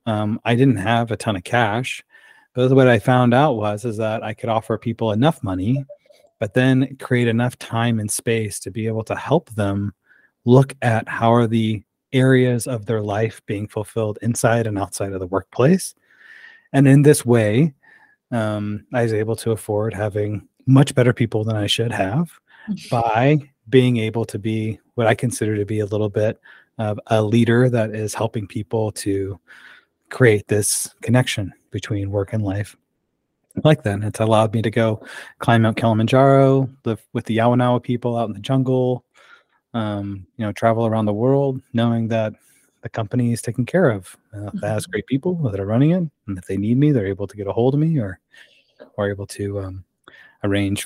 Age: 30-49